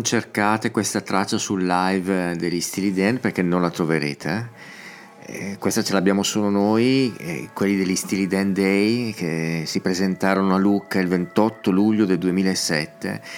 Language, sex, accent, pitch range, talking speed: Italian, male, native, 85-100 Hz, 145 wpm